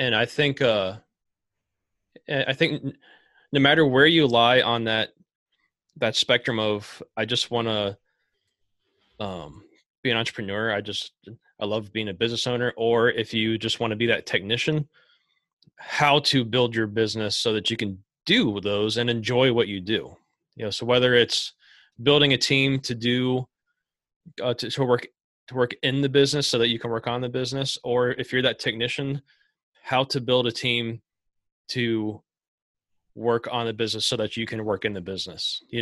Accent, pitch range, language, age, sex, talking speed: American, 105-130 Hz, English, 20-39, male, 180 wpm